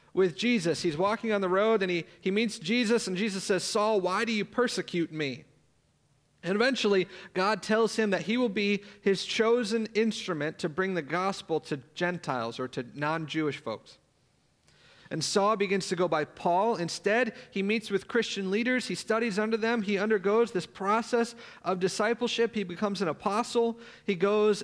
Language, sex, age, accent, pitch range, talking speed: English, male, 40-59, American, 155-205 Hz, 175 wpm